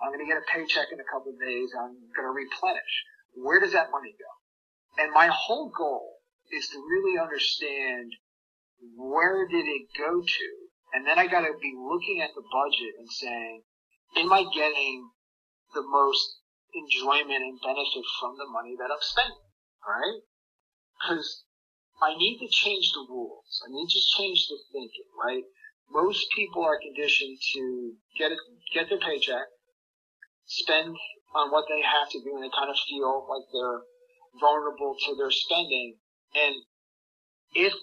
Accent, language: American, English